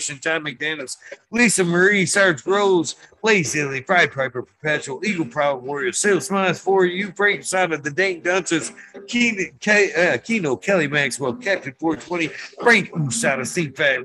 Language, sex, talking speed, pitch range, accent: English, male, 135 wpm, 155-200 Hz, American